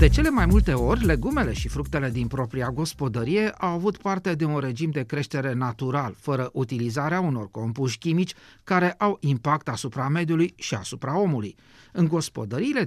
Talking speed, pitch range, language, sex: 165 wpm, 120-170 Hz, Romanian, male